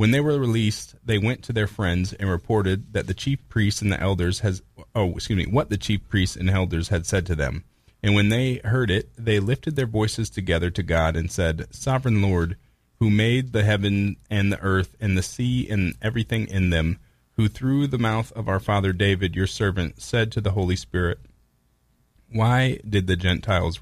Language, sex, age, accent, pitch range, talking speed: English, male, 30-49, American, 90-110 Hz, 205 wpm